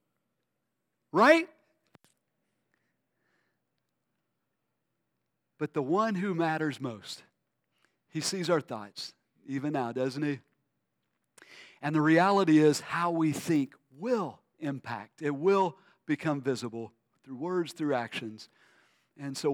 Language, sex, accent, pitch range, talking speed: English, male, American, 145-210 Hz, 105 wpm